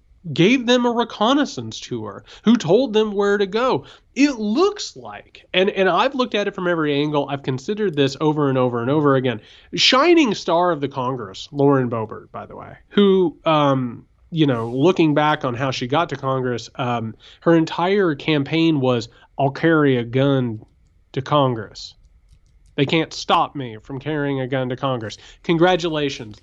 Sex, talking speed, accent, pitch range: male, 175 wpm, American, 130-185 Hz